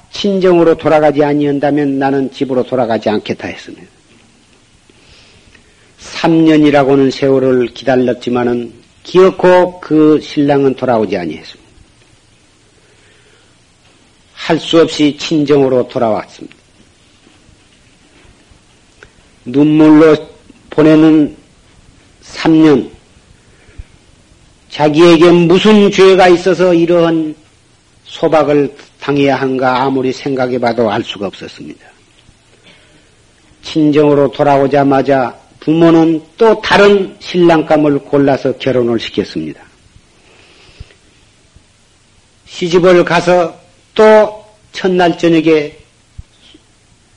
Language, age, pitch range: Korean, 50-69, 130-170 Hz